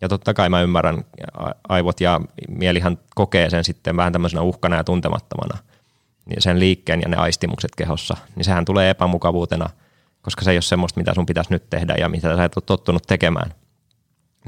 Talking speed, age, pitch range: 185 wpm, 20-39, 85-95 Hz